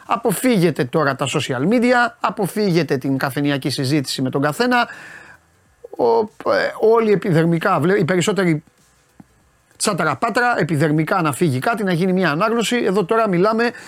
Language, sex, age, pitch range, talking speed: Greek, male, 30-49, 145-195 Hz, 120 wpm